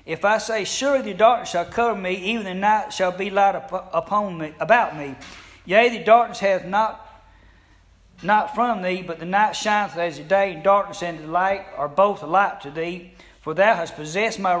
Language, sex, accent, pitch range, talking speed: English, male, American, 170-220 Hz, 200 wpm